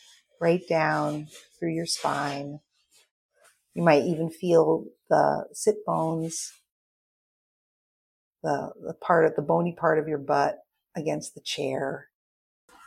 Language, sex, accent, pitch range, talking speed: English, female, American, 155-195 Hz, 115 wpm